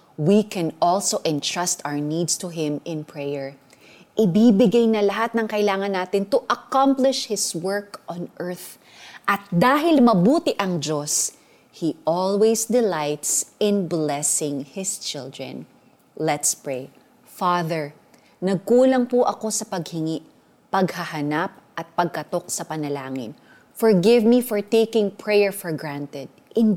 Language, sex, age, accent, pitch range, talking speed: Filipino, female, 20-39, native, 165-255 Hz, 125 wpm